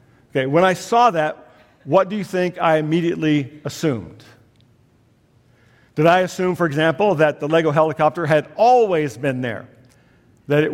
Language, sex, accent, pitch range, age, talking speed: English, male, American, 135-180 Hz, 50-69, 150 wpm